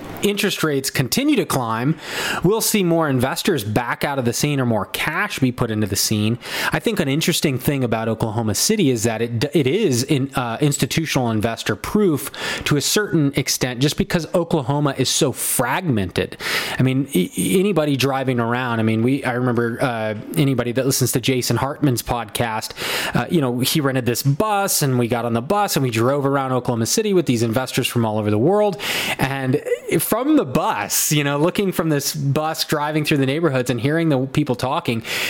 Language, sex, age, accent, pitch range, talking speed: English, male, 20-39, American, 125-175 Hz, 195 wpm